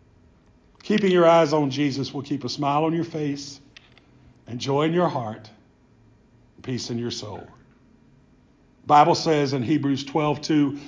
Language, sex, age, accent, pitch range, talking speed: English, male, 50-69, American, 130-175 Hz, 155 wpm